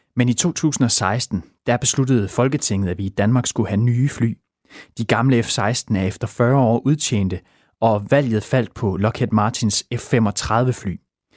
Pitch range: 100-125 Hz